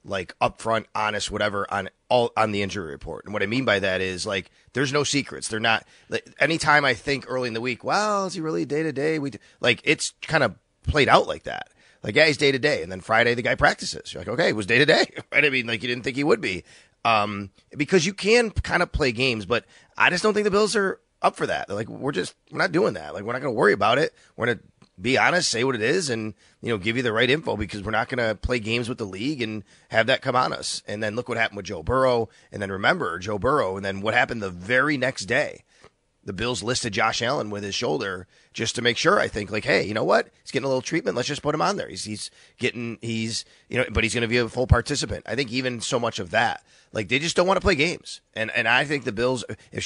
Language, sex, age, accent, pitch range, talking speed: English, male, 30-49, American, 110-145 Hz, 270 wpm